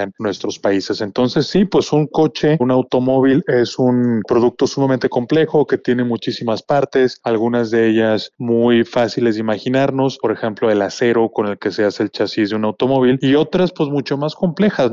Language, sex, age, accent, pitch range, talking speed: Spanish, male, 20-39, Mexican, 110-135 Hz, 185 wpm